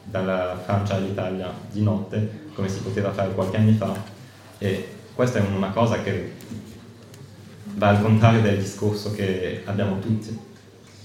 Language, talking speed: Italian, 140 wpm